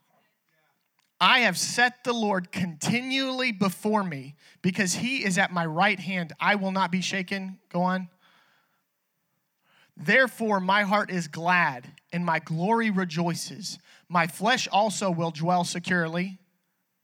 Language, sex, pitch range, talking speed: English, male, 175-215 Hz, 130 wpm